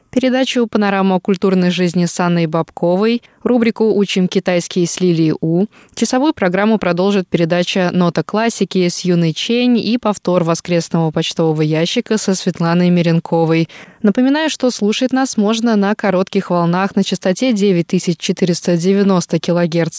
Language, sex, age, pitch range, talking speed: Russian, female, 20-39, 170-205 Hz, 125 wpm